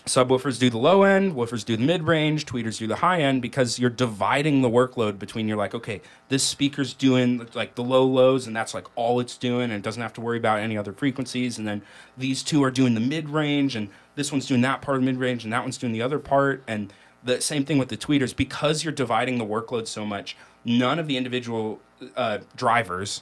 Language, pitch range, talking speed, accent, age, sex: English, 110-135 Hz, 235 wpm, American, 30-49, male